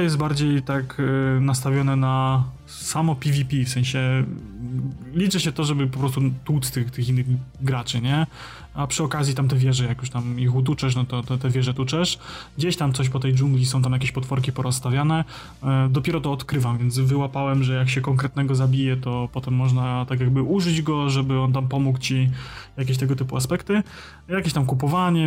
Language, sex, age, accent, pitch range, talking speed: Polish, male, 20-39, native, 130-150 Hz, 190 wpm